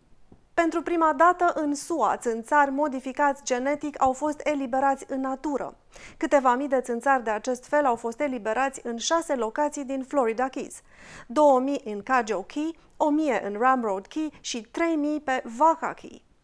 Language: Romanian